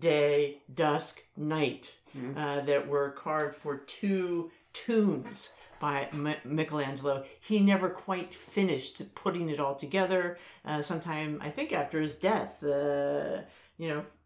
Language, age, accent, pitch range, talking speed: English, 50-69, American, 145-185 Hz, 125 wpm